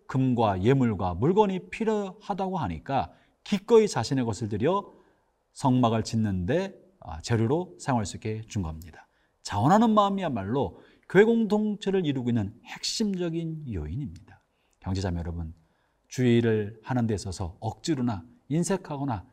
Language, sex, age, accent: Korean, male, 40-59, native